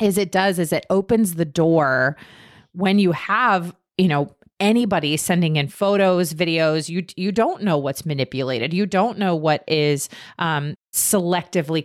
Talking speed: 155 wpm